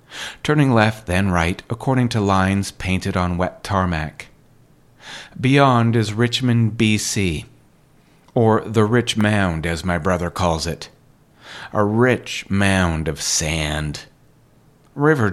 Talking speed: 115 wpm